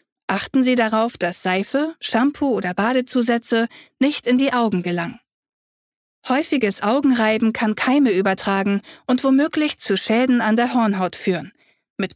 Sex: female